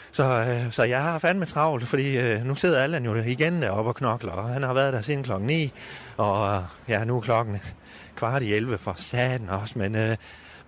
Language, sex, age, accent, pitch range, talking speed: Danish, male, 30-49, native, 110-135 Hz, 220 wpm